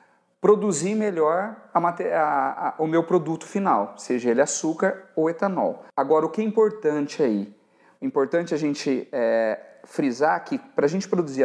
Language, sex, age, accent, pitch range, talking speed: Portuguese, male, 40-59, Brazilian, 145-190 Hz, 170 wpm